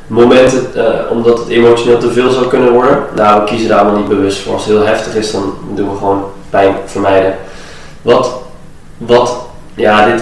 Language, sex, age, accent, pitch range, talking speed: Dutch, male, 20-39, Dutch, 100-120 Hz, 190 wpm